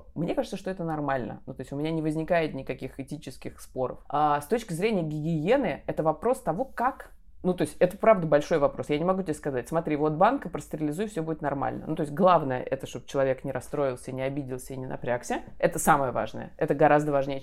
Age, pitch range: 20-39, 140-175 Hz